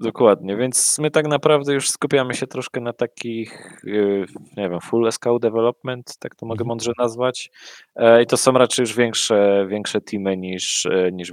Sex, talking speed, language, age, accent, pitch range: male, 165 wpm, Polish, 20-39, native, 100-125 Hz